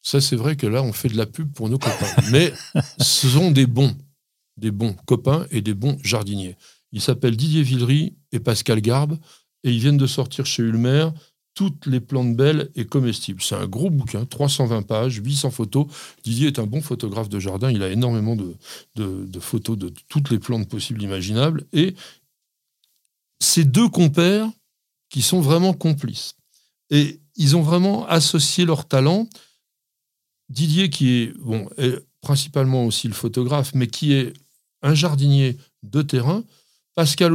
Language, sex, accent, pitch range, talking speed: French, male, French, 120-165 Hz, 165 wpm